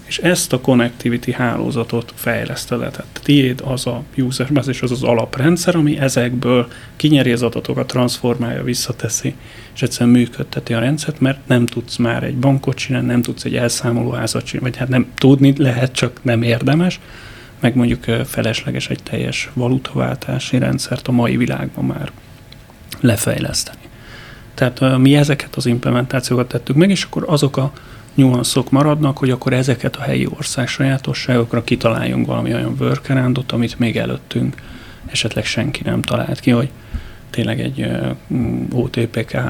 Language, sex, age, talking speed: Hungarian, male, 30-49, 145 wpm